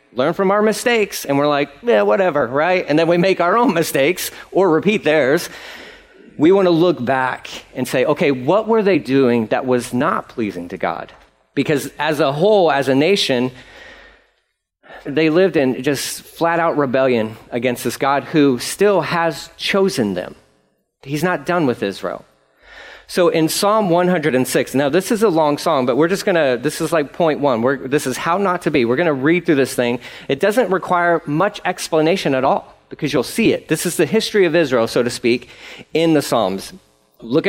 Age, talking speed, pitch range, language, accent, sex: 40-59, 195 wpm, 135-185 Hz, English, American, male